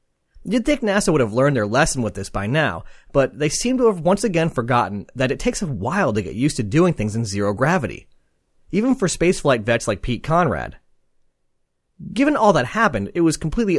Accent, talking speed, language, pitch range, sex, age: American, 210 wpm, English, 115-175 Hz, male, 30-49